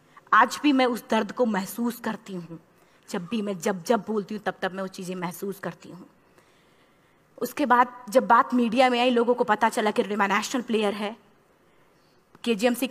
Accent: native